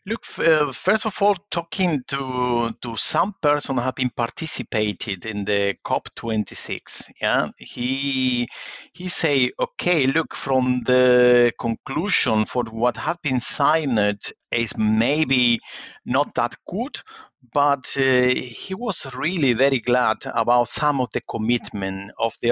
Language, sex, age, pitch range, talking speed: English, male, 50-69, 115-135 Hz, 140 wpm